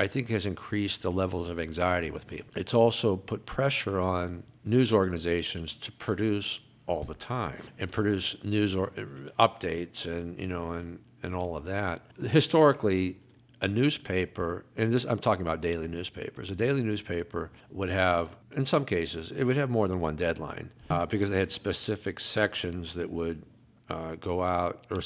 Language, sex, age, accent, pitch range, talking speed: English, male, 60-79, American, 85-115 Hz, 170 wpm